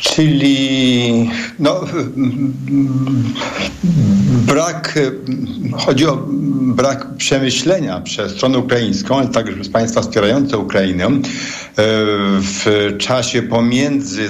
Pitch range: 115-145 Hz